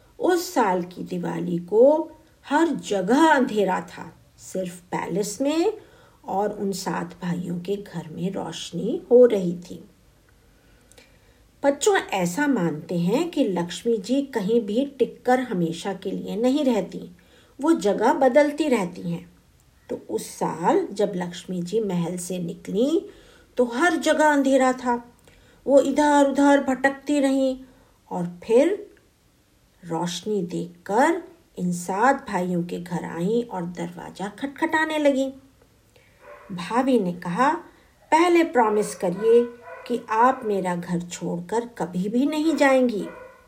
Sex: female